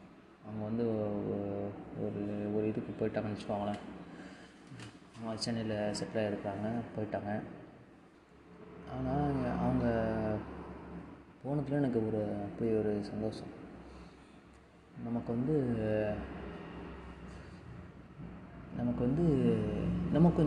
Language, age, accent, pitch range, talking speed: Tamil, 20-39, native, 105-120 Hz, 70 wpm